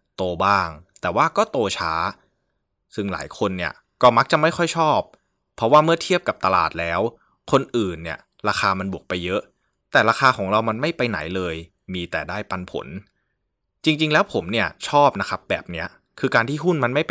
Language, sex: Thai, male